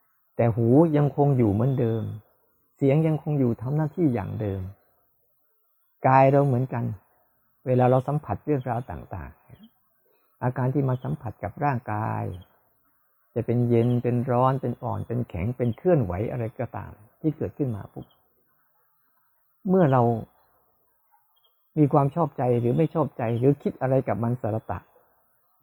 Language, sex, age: Thai, male, 60-79